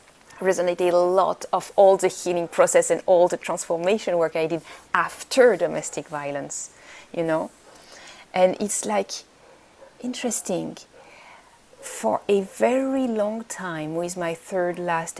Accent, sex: French, female